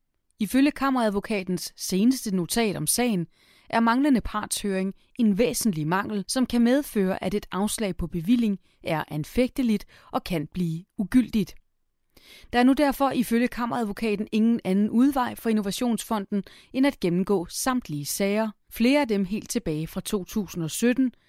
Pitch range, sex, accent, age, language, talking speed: 180-230 Hz, female, native, 30-49, Danish, 140 wpm